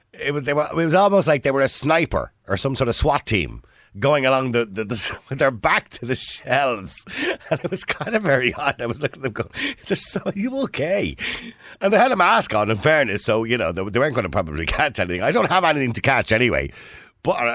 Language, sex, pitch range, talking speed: English, male, 105-170 Hz, 245 wpm